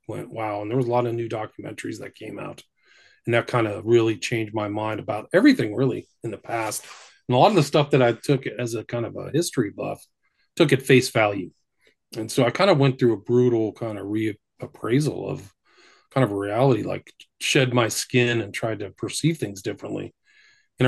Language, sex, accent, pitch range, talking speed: English, male, American, 110-130 Hz, 215 wpm